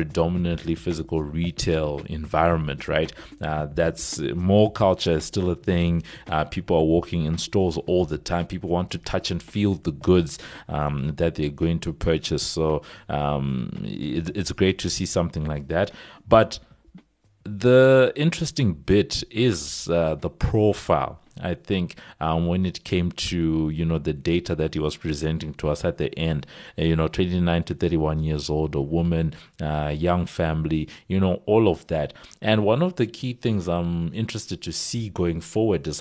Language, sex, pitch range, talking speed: English, male, 80-95 Hz, 170 wpm